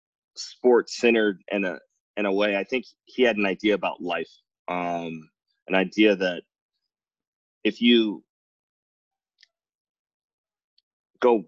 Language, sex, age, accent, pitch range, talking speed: English, male, 20-39, American, 90-110 Hz, 110 wpm